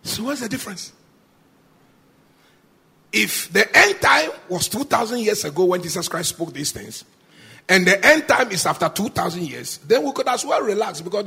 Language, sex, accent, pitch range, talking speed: English, male, Nigerian, 195-285 Hz, 175 wpm